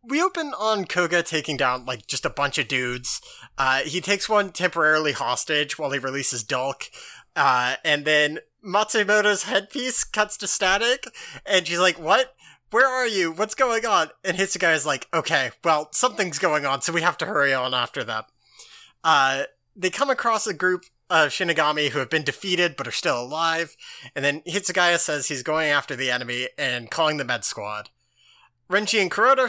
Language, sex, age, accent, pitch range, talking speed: English, male, 30-49, American, 140-195 Hz, 180 wpm